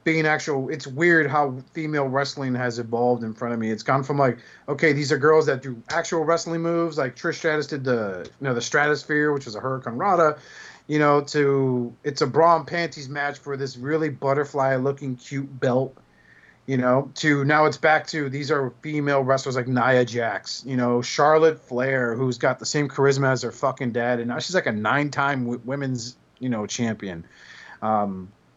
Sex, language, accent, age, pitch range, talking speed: male, English, American, 30-49, 115-145 Hz, 195 wpm